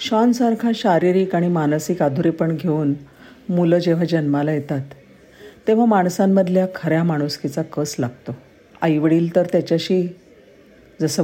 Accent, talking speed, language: native, 105 wpm, Marathi